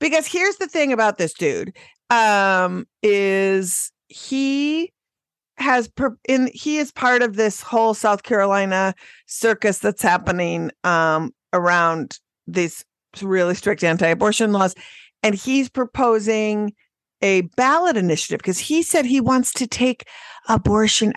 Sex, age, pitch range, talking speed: female, 50-69, 170-250 Hz, 130 wpm